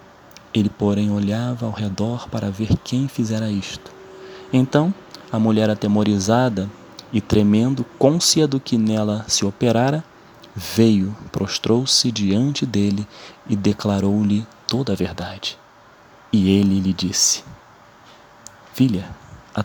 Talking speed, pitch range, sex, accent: 115 wpm, 105-125 Hz, male, Brazilian